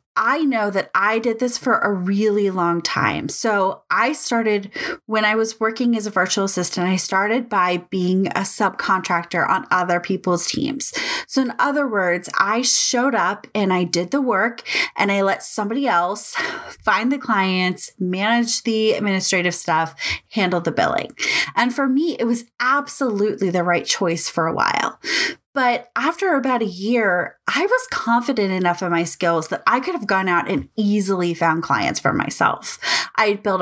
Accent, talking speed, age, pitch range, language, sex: American, 175 wpm, 20-39, 185-255 Hz, English, female